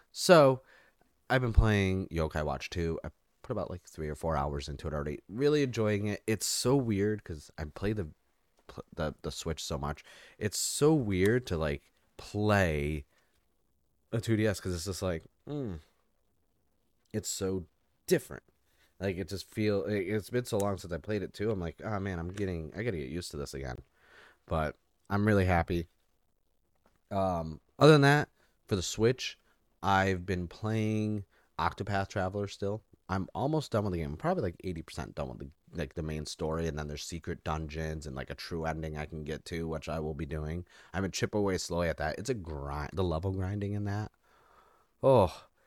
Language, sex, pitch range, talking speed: English, male, 75-105 Hz, 190 wpm